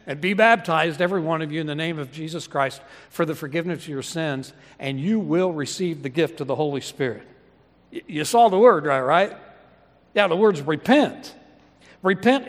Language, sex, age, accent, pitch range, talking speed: English, male, 60-79, American, 145-195 Hz, 195 wpm